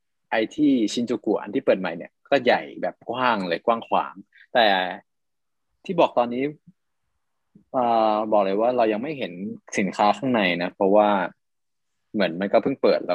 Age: 20-39